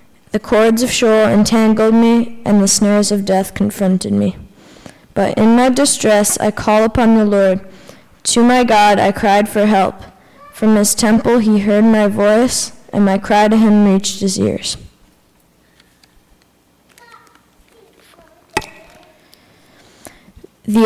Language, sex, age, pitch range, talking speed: English, female, 10-29, 200-230 Hz, 130 wpm